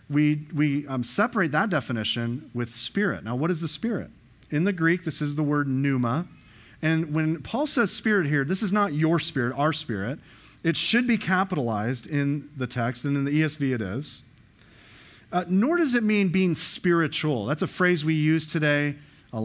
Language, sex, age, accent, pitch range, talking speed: English, male, 40-59, American, 120-160 Hz, 190 wpm